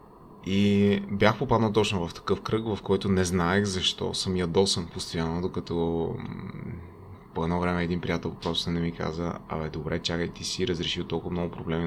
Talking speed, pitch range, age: 170 wpm, 85-95 Hz, 20-39